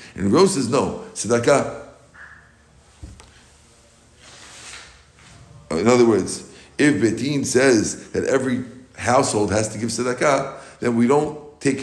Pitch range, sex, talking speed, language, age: 105-125 Hz, male, 110 wpm, English, 50-69